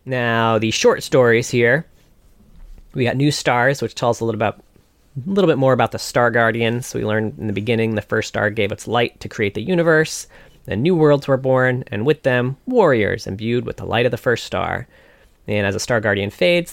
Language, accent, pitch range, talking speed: English, American, 110-135 Hz, 215 wpm